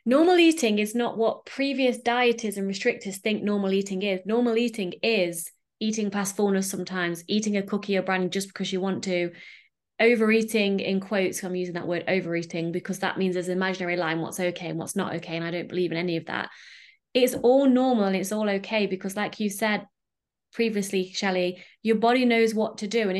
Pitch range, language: 190-235 Hz, English